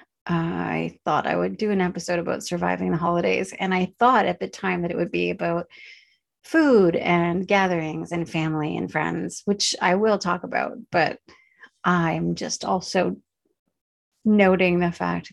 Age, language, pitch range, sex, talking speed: 30-49, English, 160-190 Hz, female, 165 wpm